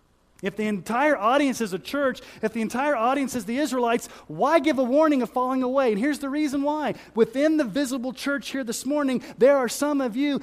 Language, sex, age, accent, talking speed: English, male, 40-59, American, 220 wpm